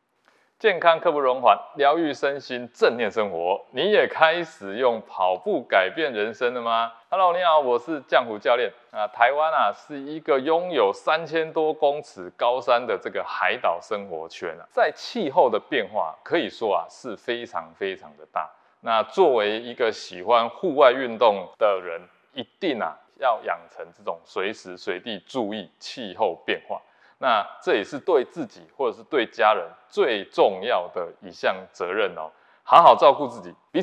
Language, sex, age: Chinese, male, 20-39